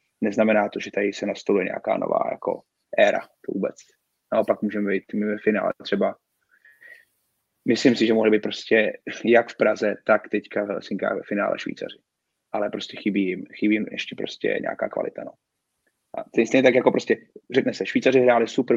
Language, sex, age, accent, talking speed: Czech, male, 20-39, native, 175 wpm